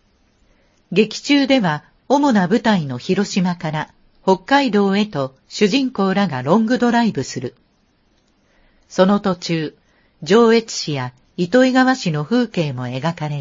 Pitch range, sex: 150-225 Hz, female